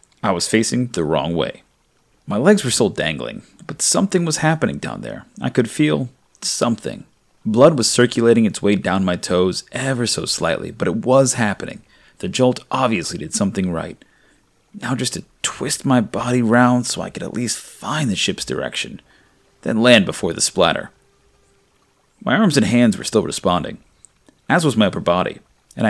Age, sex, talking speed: 30-49, male, 175 wpm